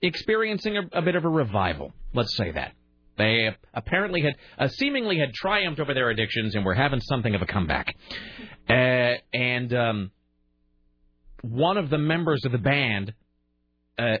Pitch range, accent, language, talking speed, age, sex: 90-135 Hz, American, English, 160 wpm, 30-49, male